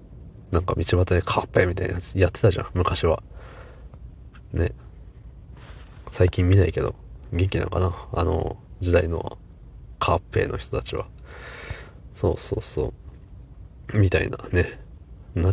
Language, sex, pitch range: Japanese, male, 85-95 Hz